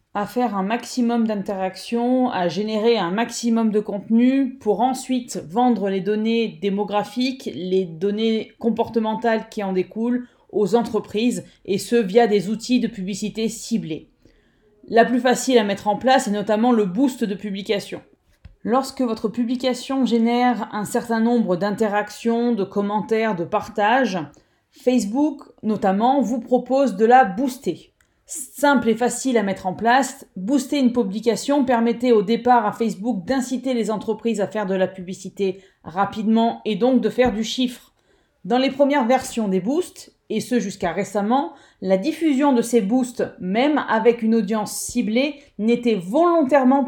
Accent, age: French, 30-49